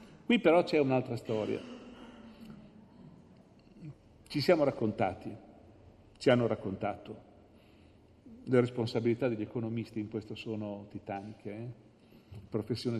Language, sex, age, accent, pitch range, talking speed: Italian, male, 50-69, native, 110-145 Hz, 95 wpm